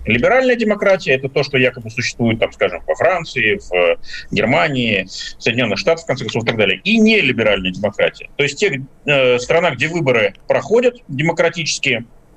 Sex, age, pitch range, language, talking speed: male, 40-59, 130-175 Hz, Russian, 155 wpm